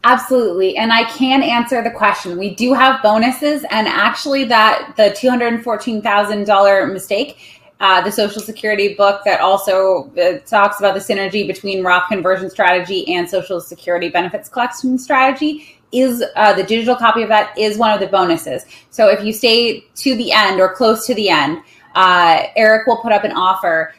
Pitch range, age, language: 185-230 Hz, 20-39, English